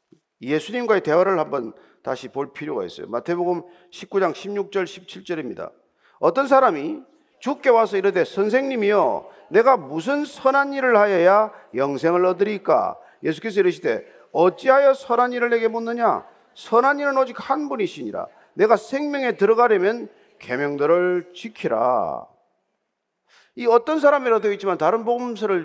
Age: 40-59